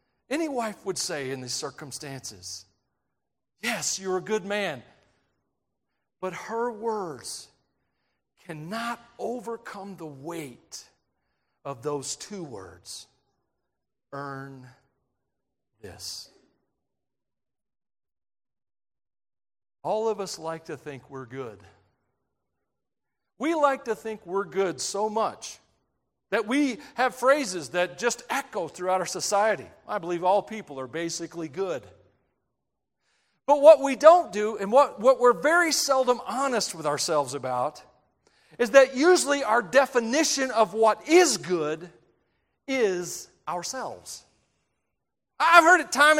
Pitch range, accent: 165-265 Hz, American